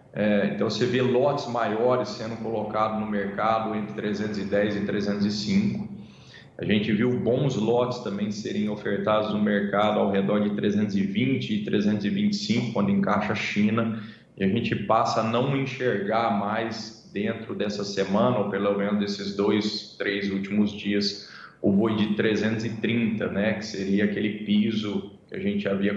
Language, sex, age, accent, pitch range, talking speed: Portuguese, male, 20-39, Brazilian, 100-115 Hz, 150 wpm